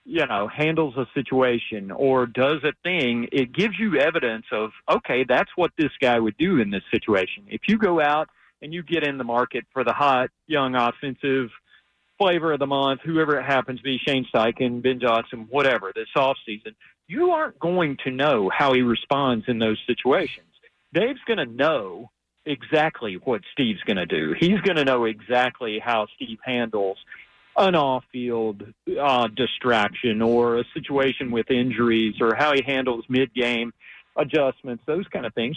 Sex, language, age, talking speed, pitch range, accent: male, English, 40-59, 170 wpm, 120-170 Hz, American